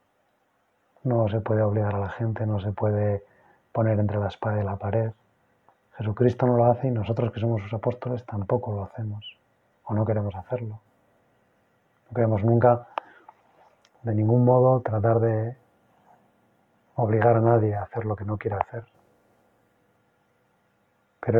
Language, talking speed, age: Spanish, 150 wpm, 30-49